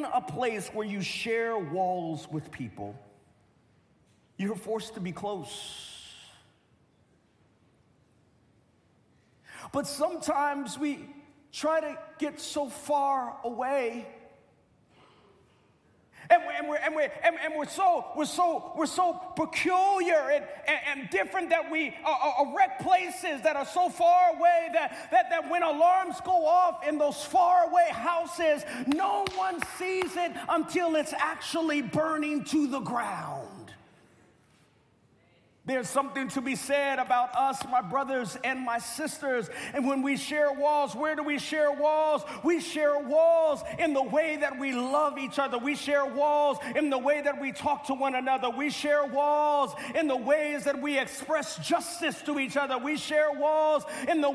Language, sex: English, male